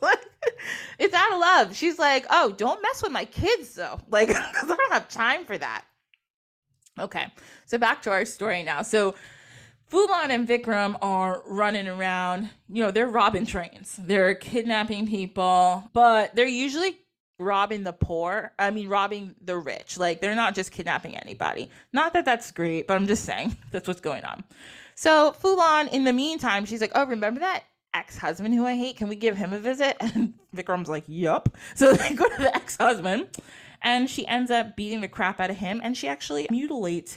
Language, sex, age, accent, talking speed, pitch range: English, female, 20-39, American, 185 wpm, 185-245 Hz